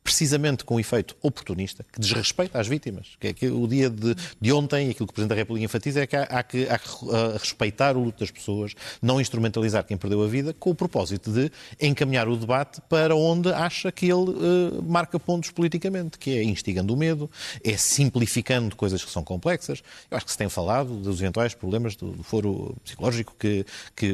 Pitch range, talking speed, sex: 100-135 Hz, 215 wpm, male